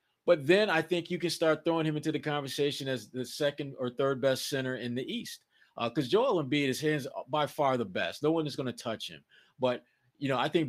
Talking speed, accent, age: 245 wpm, American, 30-49